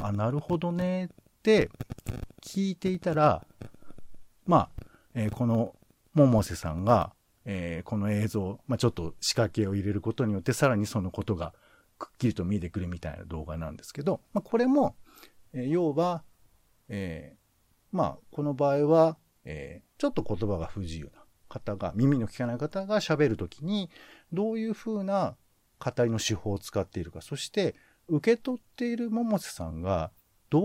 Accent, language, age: native, Japanese, 50-69